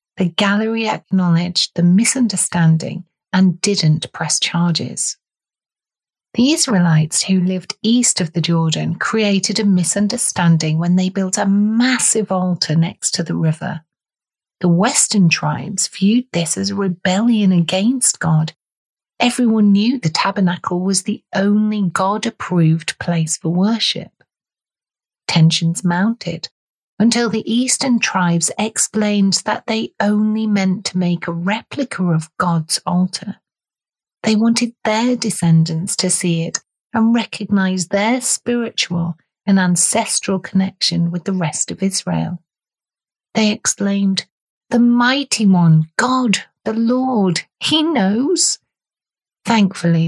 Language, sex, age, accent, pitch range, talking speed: English, female, 40-59, British, 170-220 Hz, 120 wpm